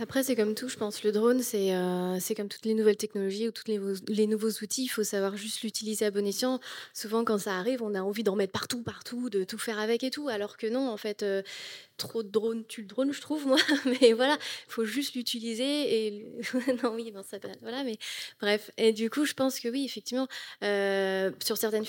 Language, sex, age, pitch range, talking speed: French, female, 20-39, 205-245 Hz, 245 wpm